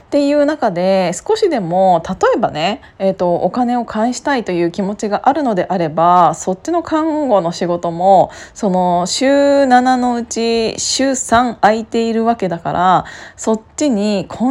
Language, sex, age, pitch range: Japanese, female, 20-39, 185-245 Hz